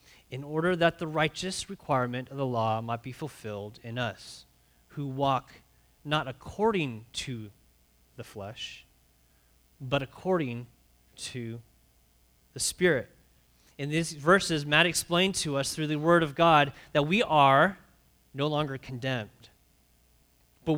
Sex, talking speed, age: male, 130 wpm, 30-49